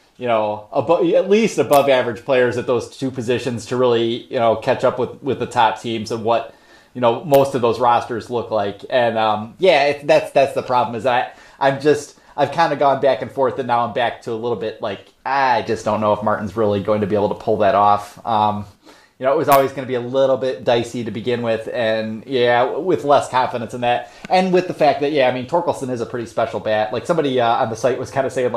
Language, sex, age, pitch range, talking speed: English, male, 30-49, 115-140 Hz, 260 wpm